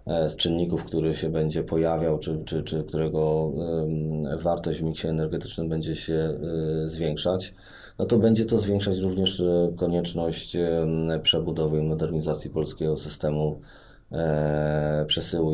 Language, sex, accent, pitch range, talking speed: Polish, male, native, 75-85 Hz, 115 wpm